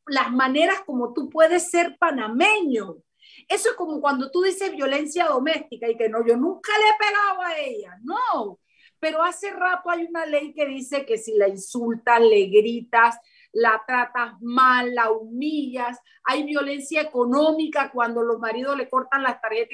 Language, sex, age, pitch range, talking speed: Spanish, female, 40-59, 245-345 Hz, 165 wpm